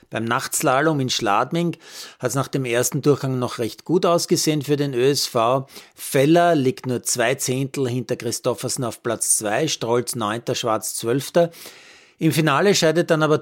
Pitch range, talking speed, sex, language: 120-155 Hz, 160 wpm, male, German